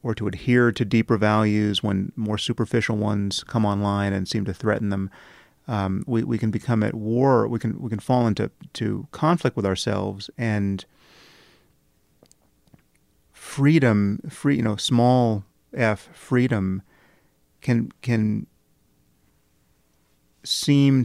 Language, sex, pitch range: English, male, 105-120 Hz